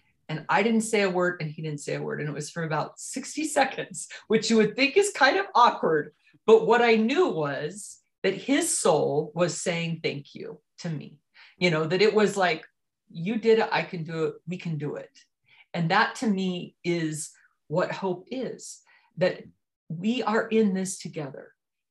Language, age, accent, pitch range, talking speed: English, 40-59, American, 165-220 Hz, 195 wpm